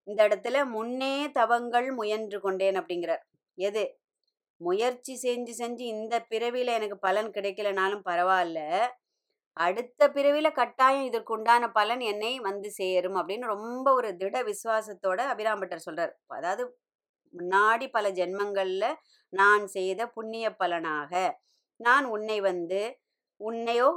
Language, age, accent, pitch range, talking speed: Tamil, 20-39, native, 190-235 Hz, 115 wpm